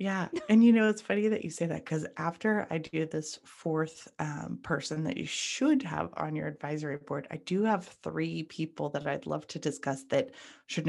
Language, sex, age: English, female, 30-49